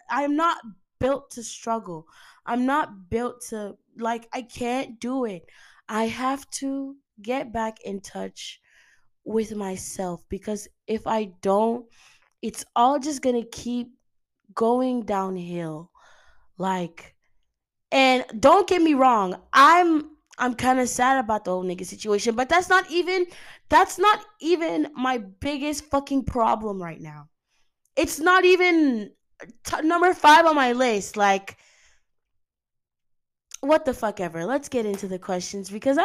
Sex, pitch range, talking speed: female, 190-275 Hz, 135 wpm